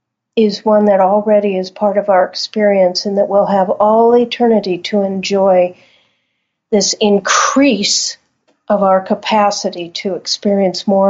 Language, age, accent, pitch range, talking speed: English, 50-69, American, 195-230 Hz, 135 wpm